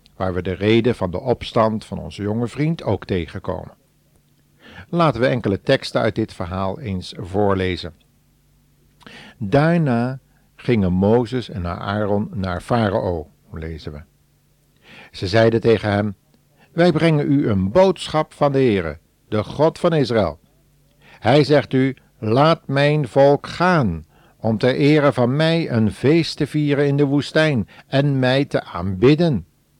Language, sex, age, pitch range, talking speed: Dutch, male, 60-79, 100-145 Hz, 140 wpm